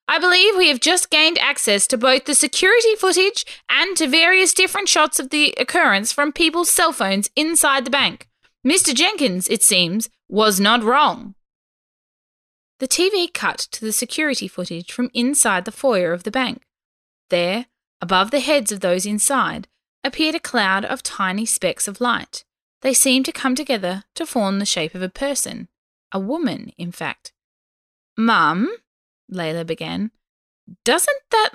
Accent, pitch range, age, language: Australian, 195-295 Hz, 10-29, English